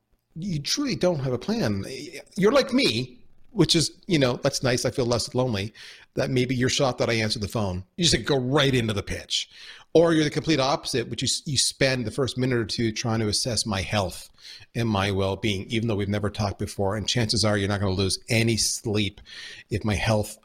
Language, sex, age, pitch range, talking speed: English, male, 40-59, 100-140 Hz, 230 wpm